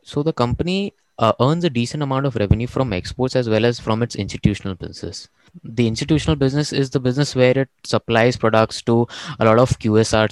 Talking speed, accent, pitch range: 200 wpm, Indian, 100-130 Hz